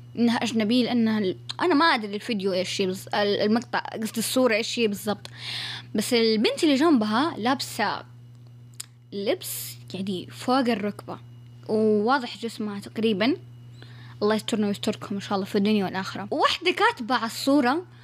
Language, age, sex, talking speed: Arabic, 20-39, female, 135 wpm